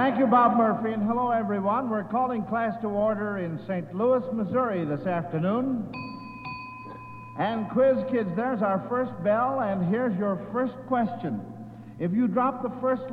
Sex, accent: male, American